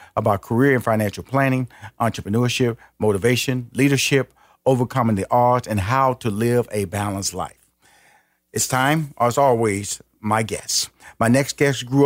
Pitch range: 120-170 Hz